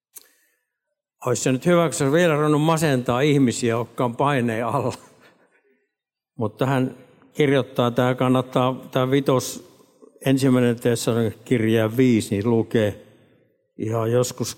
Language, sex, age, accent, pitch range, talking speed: Finnish, male, 60-79, native, 120-155 Hz, 105 wpm